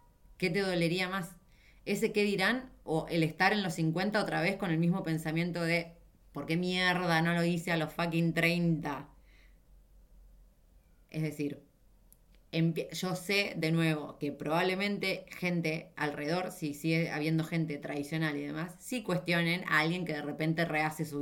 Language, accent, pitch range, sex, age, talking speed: Spanish, Argentinian, 155-185 Hz, female, 20-39, 160 wpm